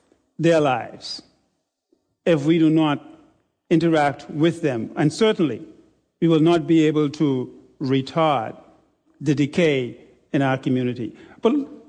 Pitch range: 145-185 Hz